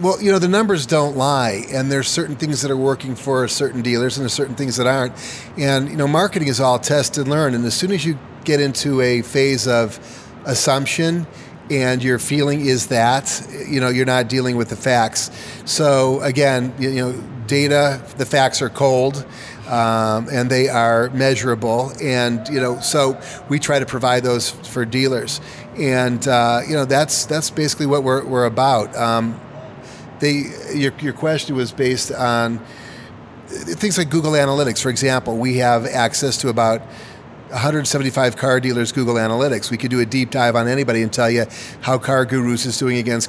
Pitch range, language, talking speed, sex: 120-140 Hz, English, 185 wpm, male